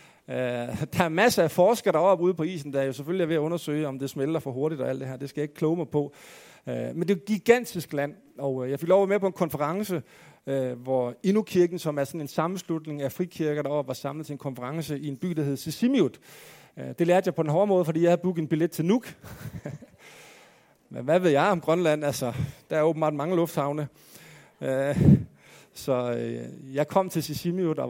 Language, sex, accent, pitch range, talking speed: Danish, male, native, 145-180 Hz, 220 wpm